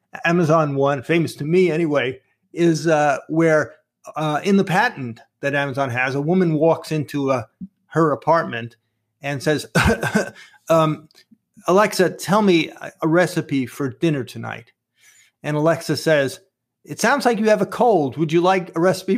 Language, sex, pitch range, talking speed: English, male, 145-185 Hz, 155 wpm